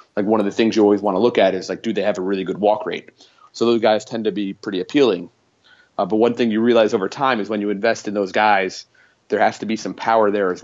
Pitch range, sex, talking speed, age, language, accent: 100-115 Hz, male, 295 wpm, 30-49, English, American